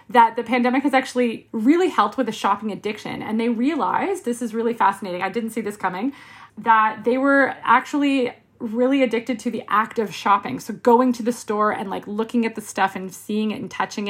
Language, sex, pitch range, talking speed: English, female, 205-260 Hz, 215 wpm